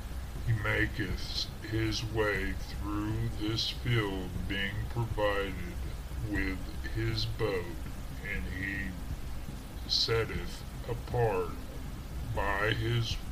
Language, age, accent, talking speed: English, 50-69, American, 80 wpm